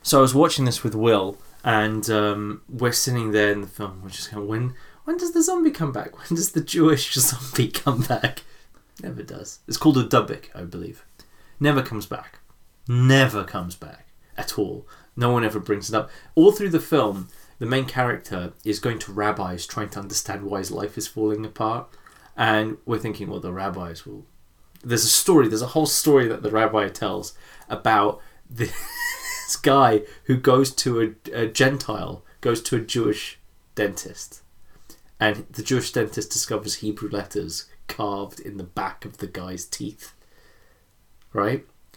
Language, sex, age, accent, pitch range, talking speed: English, male, 20-39, British, 105-150 Hz, 175 wpm